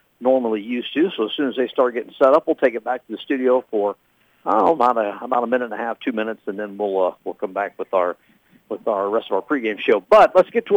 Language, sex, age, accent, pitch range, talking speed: English, male, 50-69, American, 110-135 Hz, 285 wpm